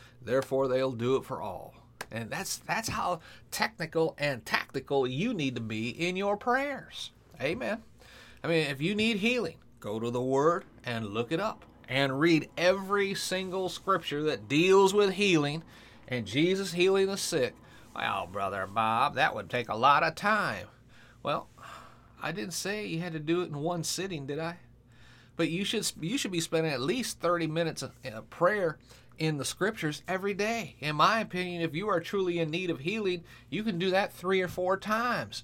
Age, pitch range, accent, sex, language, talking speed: 30-49, 125-185 Hz, American, male, English, 185 wpm